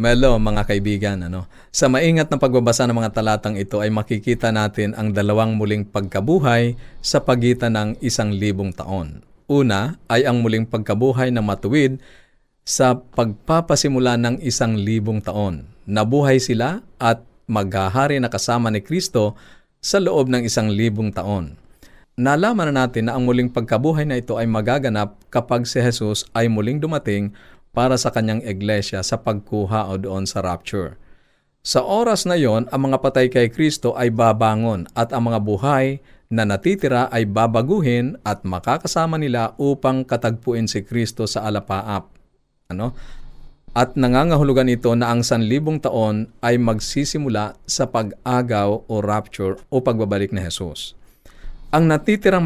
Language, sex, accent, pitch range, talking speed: Filipino, male, native, 105-130 Hz, 145 wpm